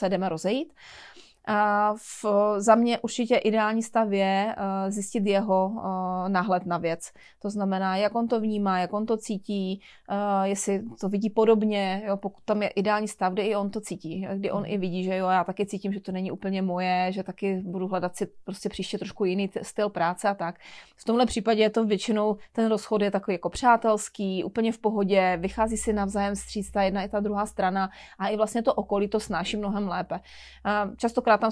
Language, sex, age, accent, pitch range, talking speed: Czech, female, 30-49, native, 190-210 Hz, 200 wpm